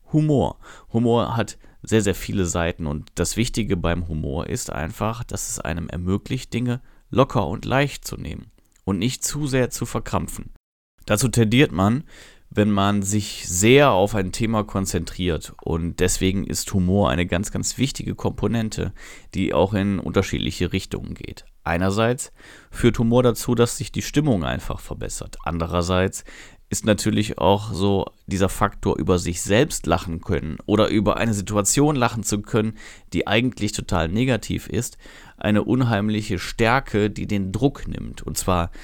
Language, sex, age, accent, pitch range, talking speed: German, male, 30-49, German, 95-120 Hz, 155 wpm